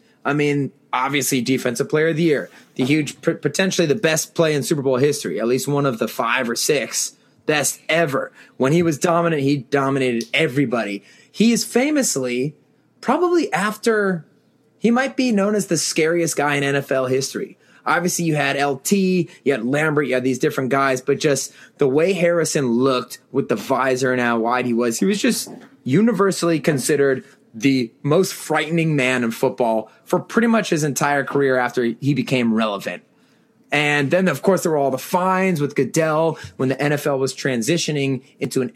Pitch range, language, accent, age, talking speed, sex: 130-165 Hz, English, American, 20-39, 180 wpm, male